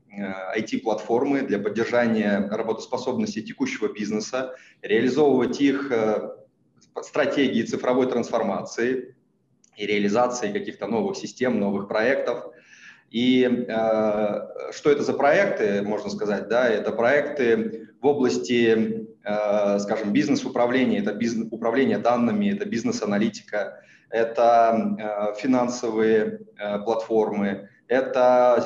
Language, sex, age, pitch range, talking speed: Russian, male, 20-39, 110-135 Hz, 85 wpm